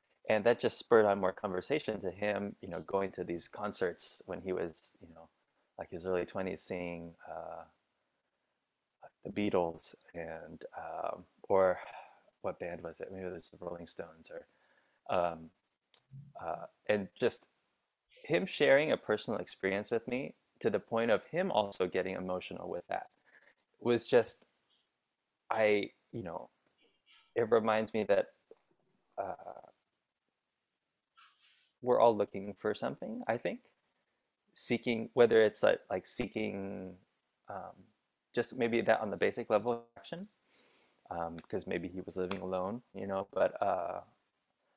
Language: English